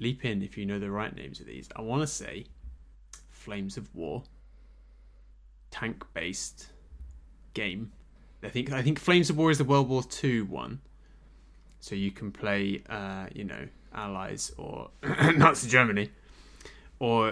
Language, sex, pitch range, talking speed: English, male, 100-125 Hz, 150 wpm